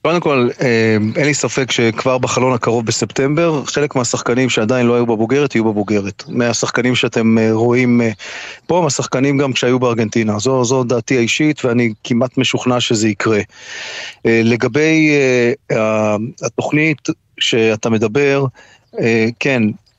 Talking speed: 115 wpm